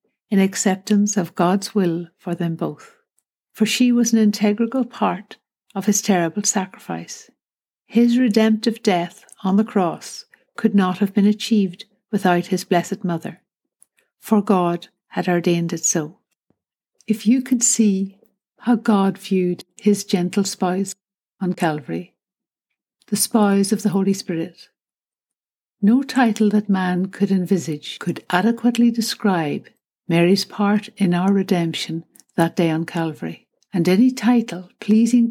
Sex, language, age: female, English, 60-79